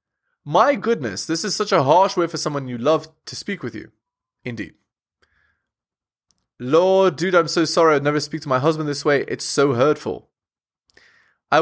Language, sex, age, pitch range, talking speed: English, male, 20-39, 130-180 Hz, 175 wpm